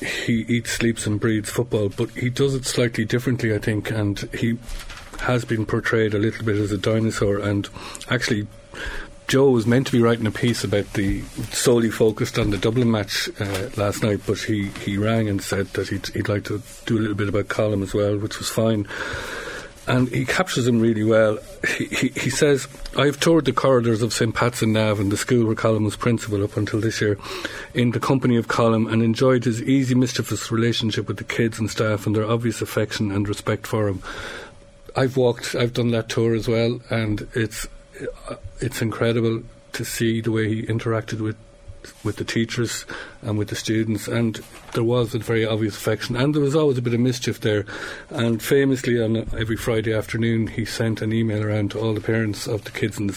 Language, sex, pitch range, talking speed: English, male, 105-120 Hz, 210 wpm